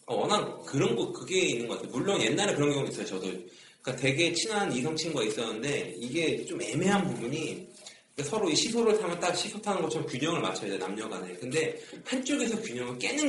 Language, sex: Korean, male